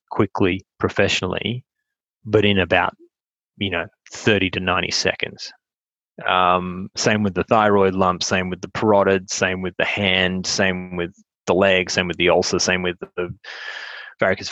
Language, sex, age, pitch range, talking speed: English, male, 20-39, 95-115 Hz, 155 wpm